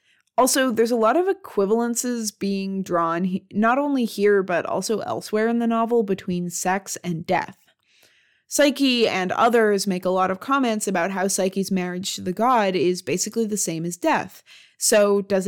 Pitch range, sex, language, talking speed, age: 180-230 Hz, female, English, 170 wpm, 20-39